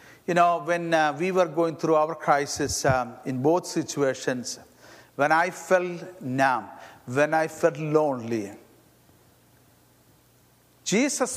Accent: Indian